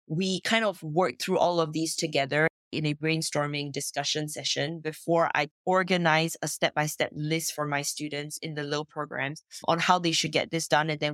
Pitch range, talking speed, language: 145-165 Hz, 195 wpm, English